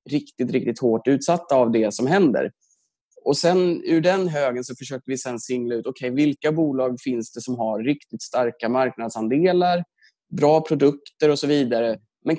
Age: 20-39